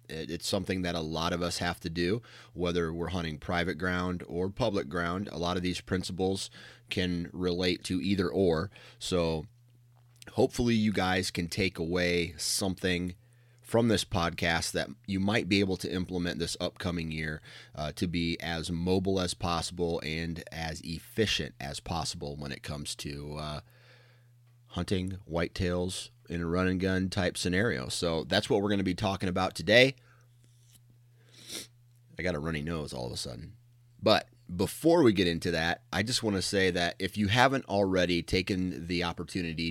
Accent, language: American, English